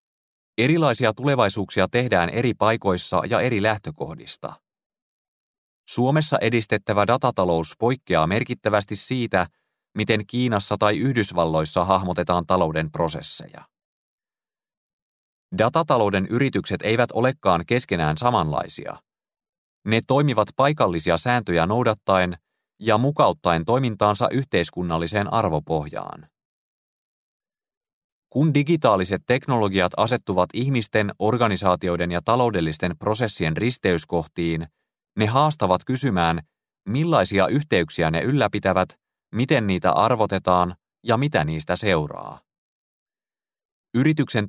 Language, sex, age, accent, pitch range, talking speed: Finnish, male, 30-49, native, 85-120 Hz, 85 wpm